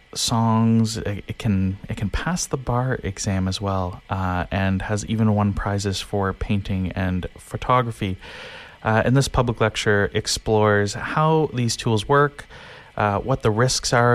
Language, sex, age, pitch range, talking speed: English, male, 30-49, 100-125 Hz, 155 wpm